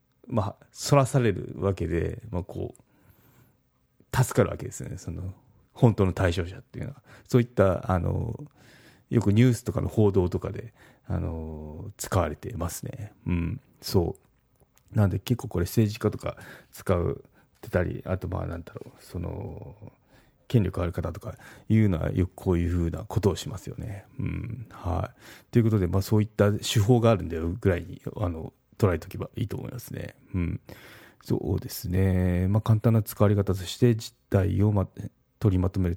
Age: 40-59